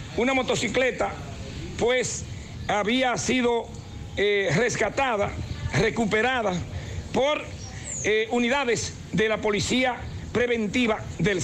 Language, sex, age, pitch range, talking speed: Spanish, male, 60-79, 210-255 Hz, 85 wpm